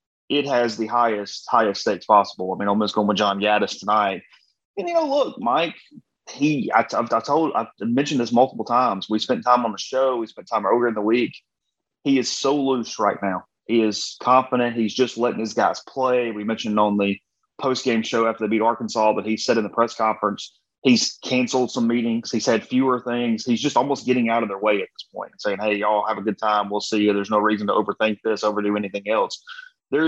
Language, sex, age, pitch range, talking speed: English, male, 30-49, 105-125 Hz, 230 wpm